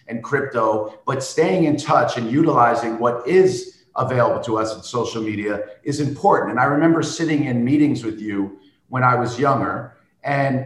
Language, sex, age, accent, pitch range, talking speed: English, male, 50-69, American, 120-145 Hz, 175 wpm